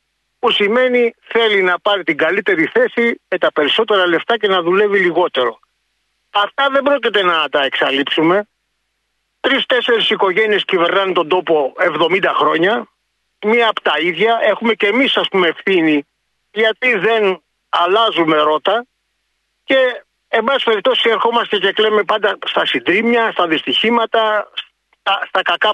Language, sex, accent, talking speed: Greek, male, native, 130 wpm